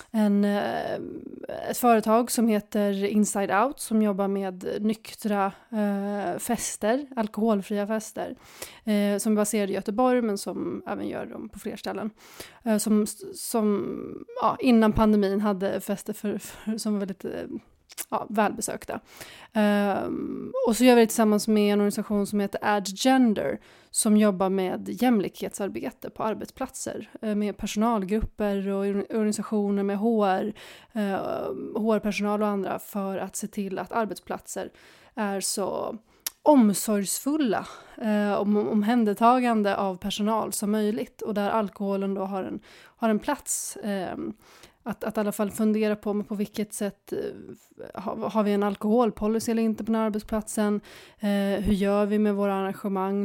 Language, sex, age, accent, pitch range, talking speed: Swedish, female, 30-49, native, 200-220 Hz, 130 wpm